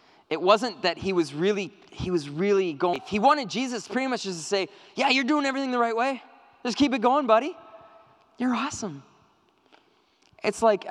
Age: 20-39